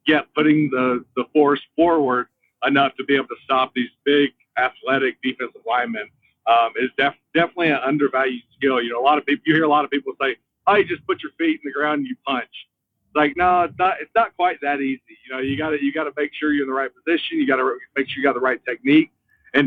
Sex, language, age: male, English, 50-69